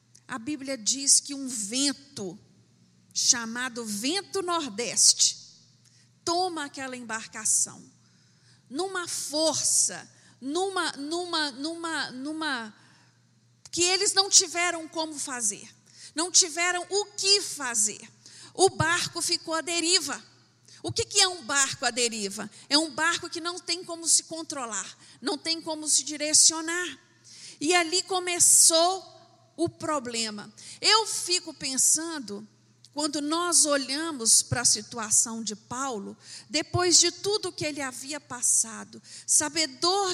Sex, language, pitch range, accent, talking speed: female, Portuguese, 225-340 Hz, Brazilian, 120 wpm